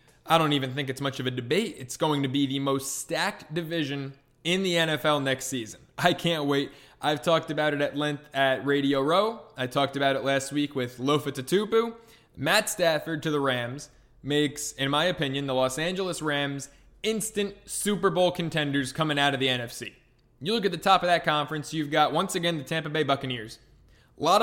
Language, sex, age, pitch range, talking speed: English, male, 20-39, 140-175 Hz, 205 wpm